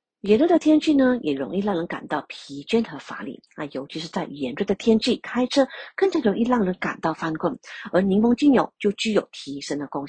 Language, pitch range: Chinese, 165-235 Hz